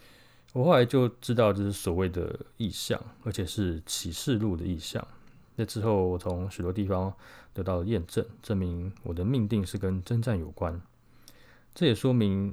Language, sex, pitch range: Chinese, male, 90-115 Hz